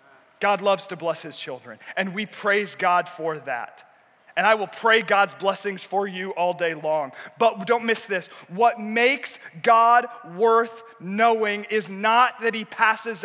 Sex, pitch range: male, 190-235 Hz